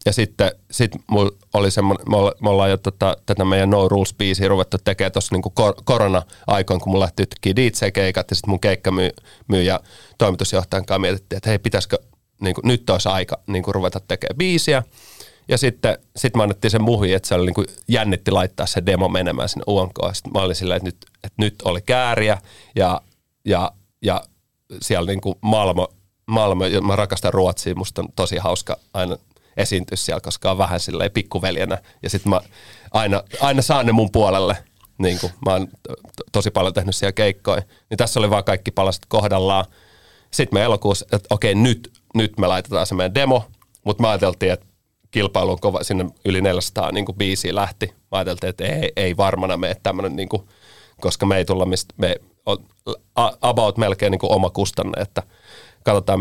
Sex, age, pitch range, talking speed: male, 30-49, 95-105 Hz, 175 wpm